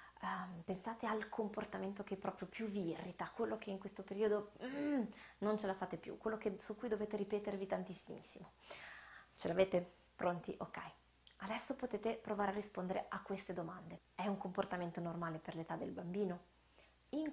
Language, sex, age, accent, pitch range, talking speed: Italian, female, 20-39, native, 180-215 Hz, 165 wpm